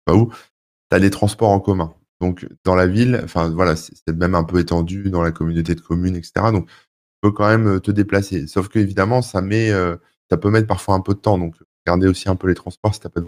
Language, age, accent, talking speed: French, 20-39, French, 250 wpm